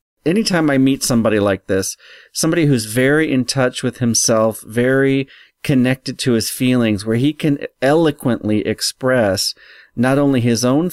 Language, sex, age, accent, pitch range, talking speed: English, male, 40-59, American, 110-135 Hz, 150 wpm